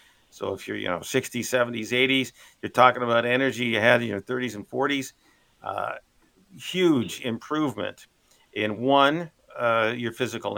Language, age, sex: English, 50-69, male